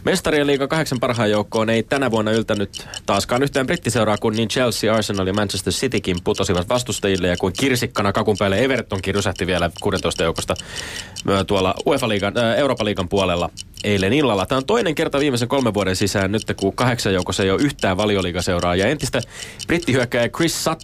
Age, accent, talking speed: 30-49, native, 165 wpm